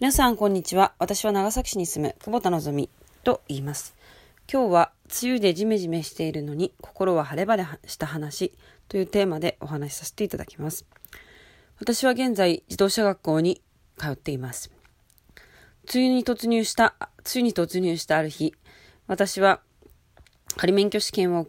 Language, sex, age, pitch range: Japanese, female, 20-39, 155-210 Hz